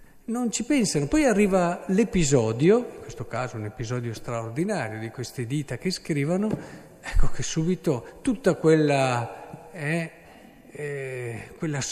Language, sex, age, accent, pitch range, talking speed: Italian, male, 50-69, native, 125-175 Hz, 125 wpm